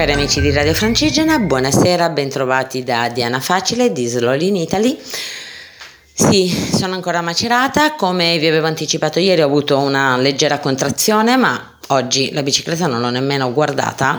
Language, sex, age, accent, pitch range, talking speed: Italian, female, 30-49, native, 135-180 Hz, 150 wpm